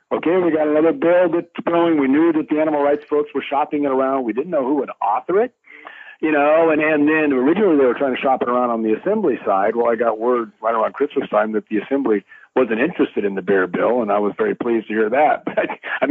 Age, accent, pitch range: 60-79, American, 115-155 Hz